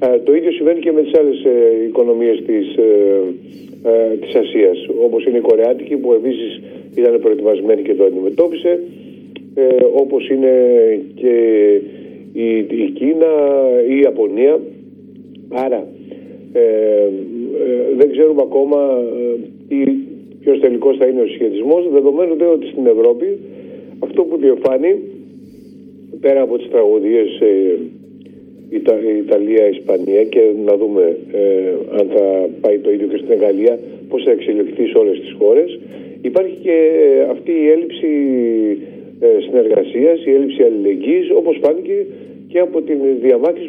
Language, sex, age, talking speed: Greek, male, 50-69, 125 wpm